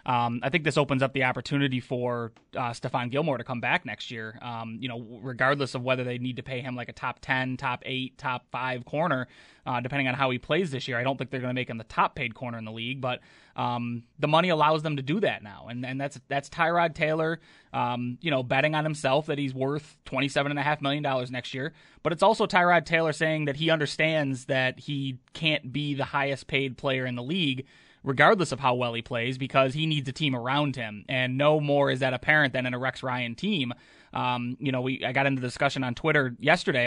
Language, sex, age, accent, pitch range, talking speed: English, male, 20-39, American, 125-150 Hz, 245 wpm